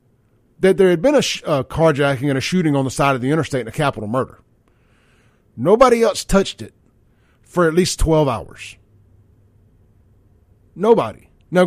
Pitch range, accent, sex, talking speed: 115-175 Hz, American, male, 165 wpm